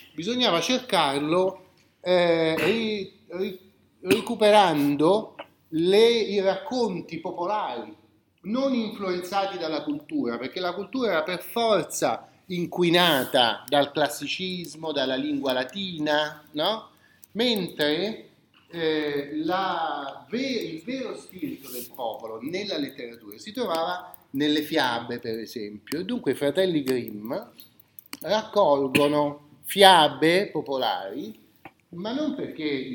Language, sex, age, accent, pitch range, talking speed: Italian, male, 30-49, native, 140-210 Hz, 85 wpm